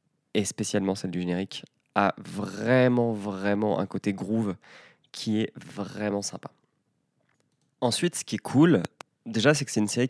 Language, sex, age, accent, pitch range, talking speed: French, male, 20-39, French, 90-115 Hz, 155 wpm